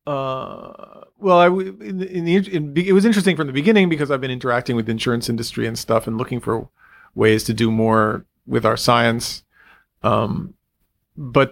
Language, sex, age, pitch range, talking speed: English, male, 40-59, 115-140 Hz, 190 wpm